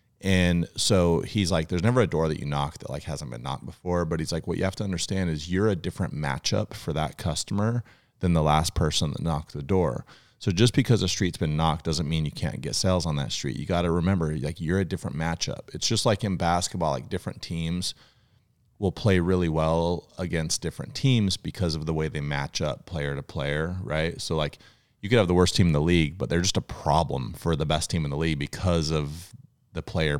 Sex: male